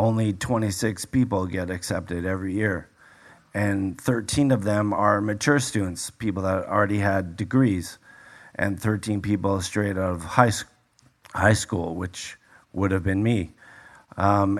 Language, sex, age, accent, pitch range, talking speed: English, male, 40-59, American, 95-110 Hz, 140 wpm